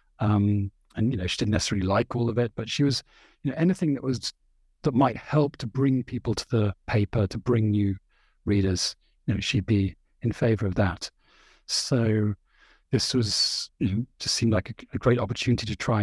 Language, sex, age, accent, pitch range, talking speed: English, male, 40-59, British, 100-130 Hz, 200 wpm